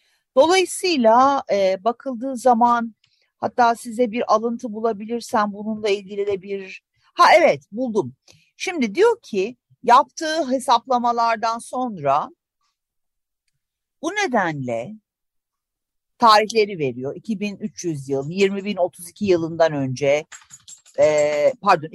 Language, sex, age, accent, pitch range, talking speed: Turkish, female, 50-69, native, 155-230 Hz, 90 wpm